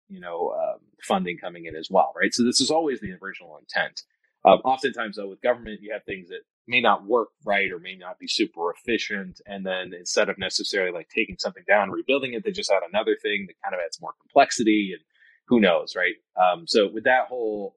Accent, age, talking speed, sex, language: American, 30-49, 225 wpm, male, English